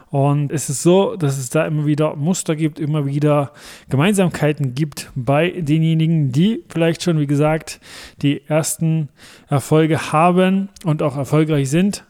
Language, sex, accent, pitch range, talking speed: German, male, German, 135-160 Hz, 150 wpm